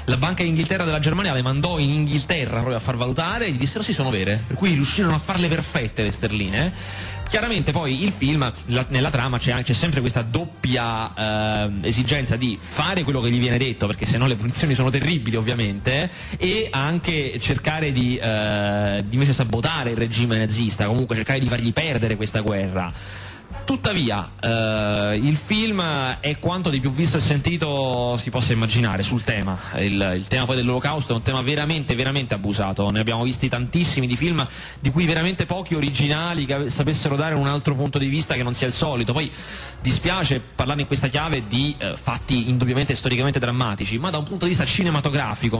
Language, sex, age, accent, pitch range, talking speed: Italian, male, 30-49, native, 115-150 Hz, 190 wpm